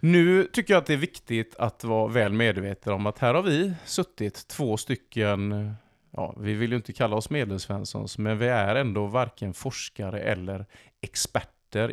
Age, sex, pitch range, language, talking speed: 30-49, male, 100-125 Hz, Swedish, 175 wpm